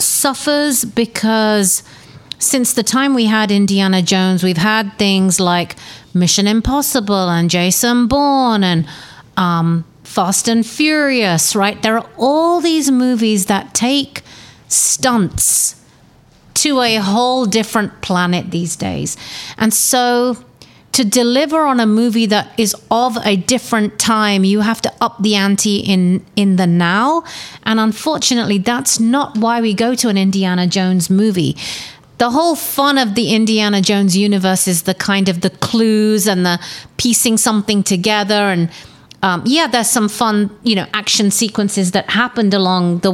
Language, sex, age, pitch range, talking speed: English, female, 30-49, 190-235 Hz, 150 wpm